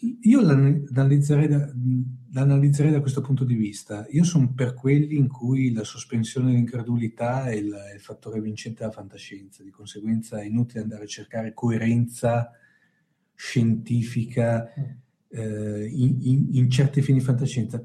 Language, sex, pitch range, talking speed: Italian, male, 120-150 Hz, 140 wpm